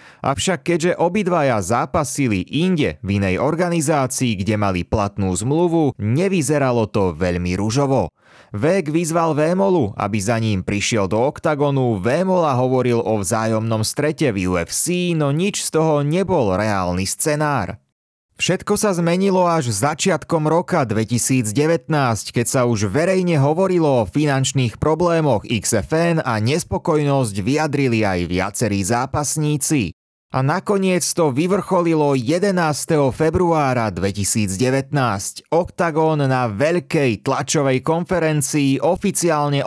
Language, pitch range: Slovak, 110-165 Hz